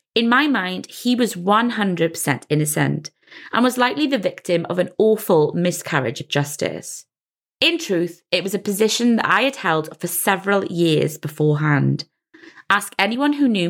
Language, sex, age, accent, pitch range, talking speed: English, female, 30-49, British, 165-220 Hz, 160 wpm